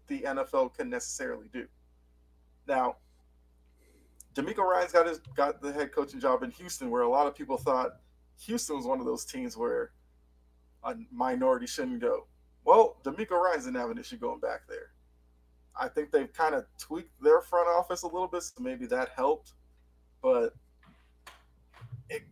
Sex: male